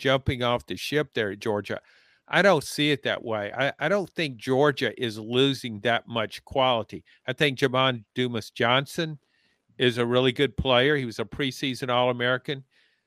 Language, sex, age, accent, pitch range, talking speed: English, male, 50-69, American, 110-135 Hz, 170 wpm